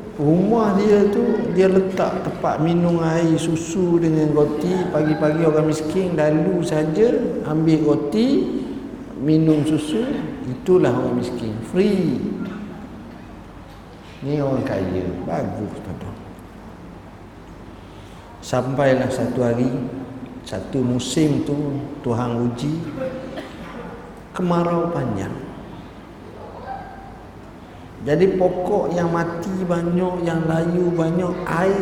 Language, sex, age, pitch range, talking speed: Malay, male, 50-69, 130-170 Hz, 90 wpm